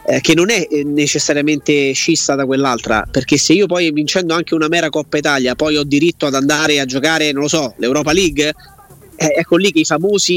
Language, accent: Italian, native